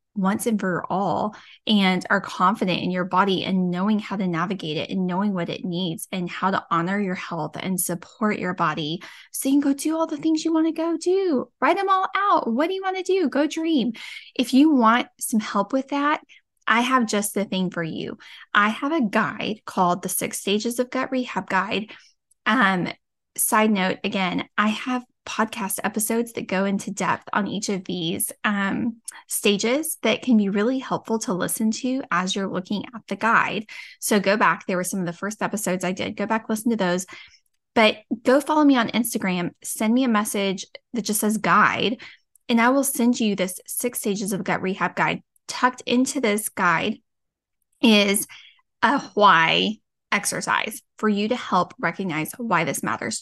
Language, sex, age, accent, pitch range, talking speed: English, female, 10-29, American, 190-255 Hz, 195 wpm